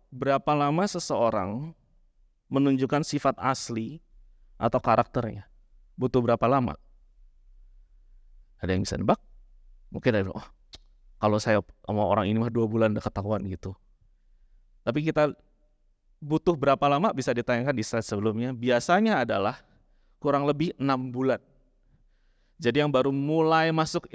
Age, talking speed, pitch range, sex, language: 30-49, 125 wpm, 120-170 Hz, male, Indonesian